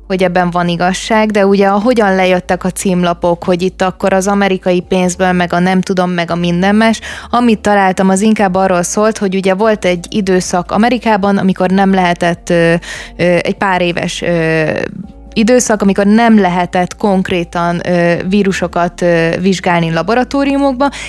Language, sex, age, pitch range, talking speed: Hungarian, female, 20-39, 180-215 Hz, 155 wpm